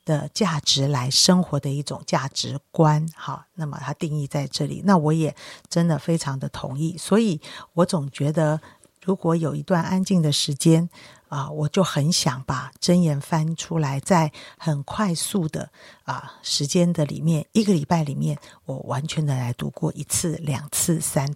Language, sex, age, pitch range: Chinese, female, 50-69, 145-175 Hz